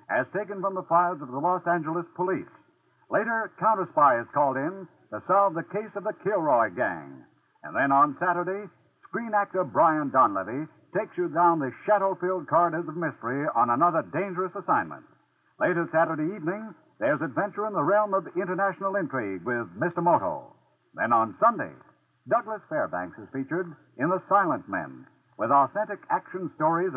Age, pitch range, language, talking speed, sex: 60-79, 165-205 Hz, English, 160 wpm, male